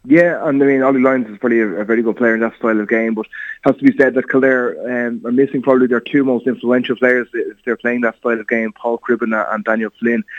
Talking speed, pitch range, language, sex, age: 270 wpm, 110-120 Hz, English, male, 20-39